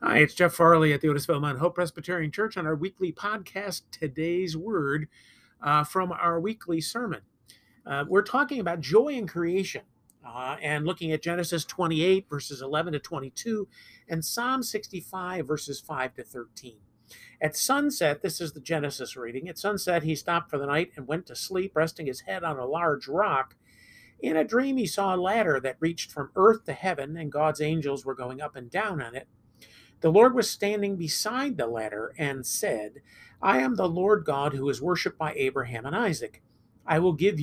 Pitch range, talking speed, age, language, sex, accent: 140-190 Hz, 190 wpm, 50-69, English, male, American